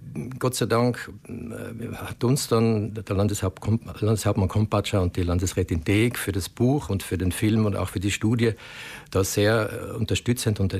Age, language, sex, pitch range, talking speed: 60-79, German, male, 100-115 Hz, 165 wpm